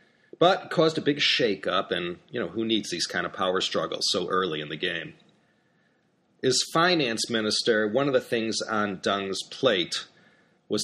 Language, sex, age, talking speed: English, male, 40-59, 170 wpm